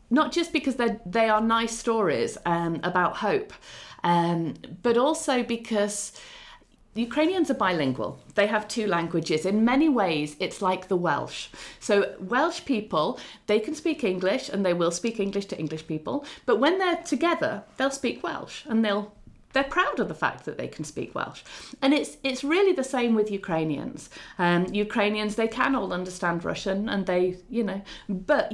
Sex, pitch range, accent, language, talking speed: female, 165-230 Hz, British, English, 170 wpm